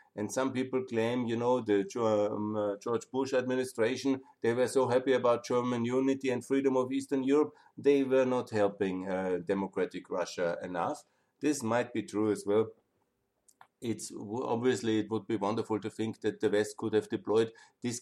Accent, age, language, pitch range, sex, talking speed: German, 50-69, German, 105-125 Hz, male, 170 wpm